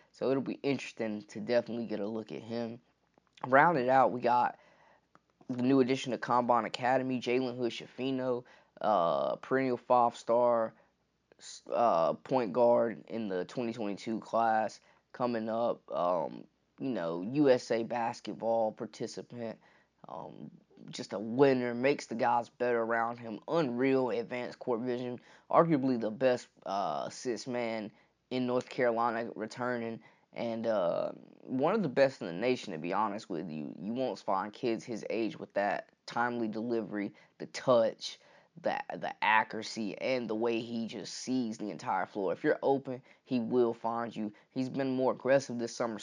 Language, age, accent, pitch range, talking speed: English, 20-39, American, 115-130 Hz, 150 wpm